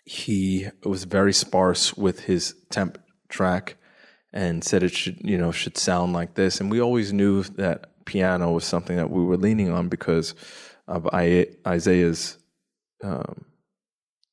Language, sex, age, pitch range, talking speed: English, male, 20-39, 85-95 Hz, 145 wpm